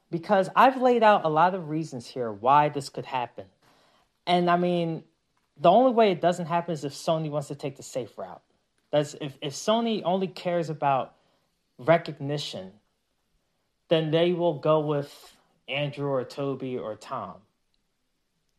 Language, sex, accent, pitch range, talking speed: English, male, American, 150-200 Hz, 160 wpm